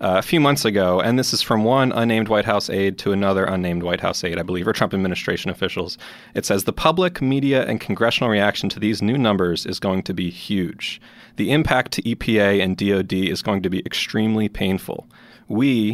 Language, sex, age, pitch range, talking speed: English, male, 30-49, 95-120 Hz, 210 wpm